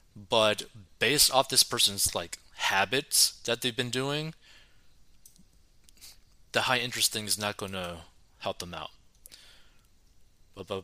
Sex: male